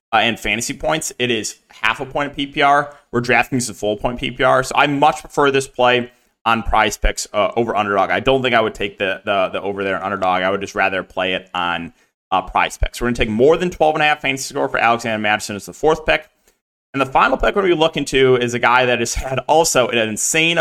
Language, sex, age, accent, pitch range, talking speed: English, male, 30-49, American, 115-145 Hz, 255 wpm